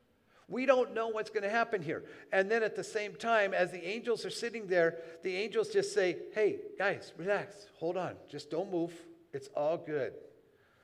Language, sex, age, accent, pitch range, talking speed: English, male, 50-69, American, 160-215 Hz, 195 wpm